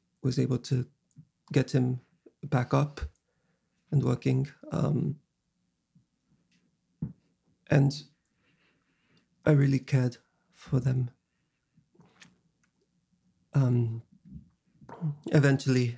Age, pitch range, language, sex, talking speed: 40-59, 130-150 Hz, English, male, 70 wpm